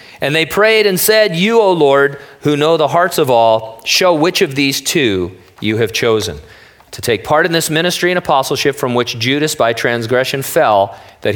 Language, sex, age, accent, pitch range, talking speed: English, male, 40-59, American, 110-135 Hz, 195 wpm